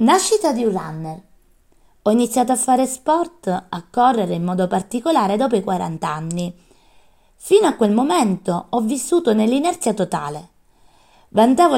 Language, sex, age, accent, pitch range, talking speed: Italian, female, 20-39, native, 190-260 Hz, 140 wpm